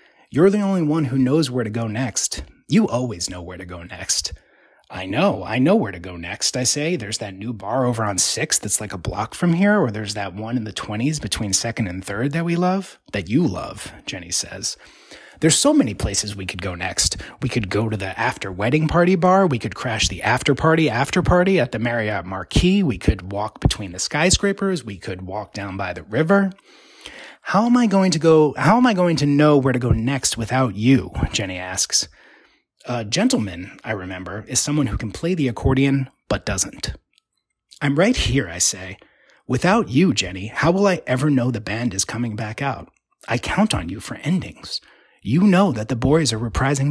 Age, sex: 30-49, male